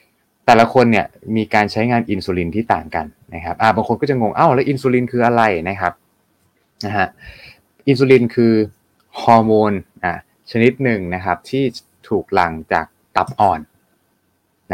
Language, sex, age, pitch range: Thai, male, 20-39, 95-120 Hz